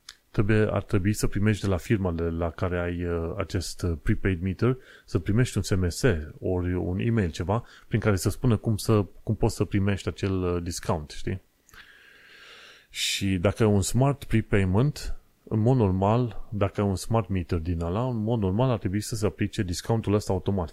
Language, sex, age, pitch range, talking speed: Romanian, male, 30-49, 90-110 Hz, 175 wpm